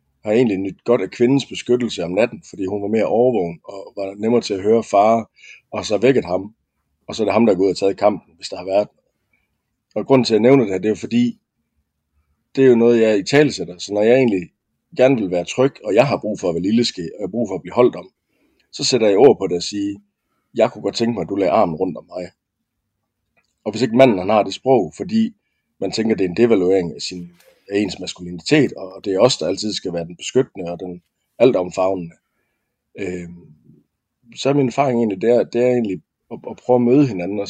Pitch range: 95-120 Hz